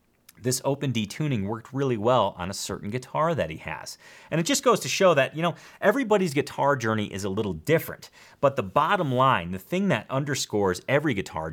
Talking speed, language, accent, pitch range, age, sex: 210 wpm, English, American, 95-150 Hz, 30-49, male